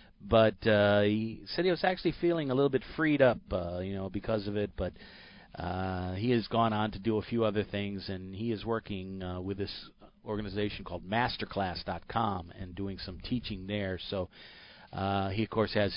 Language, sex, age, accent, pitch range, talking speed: English, male, 40-59, American, 95-120 Hz, 195 wpm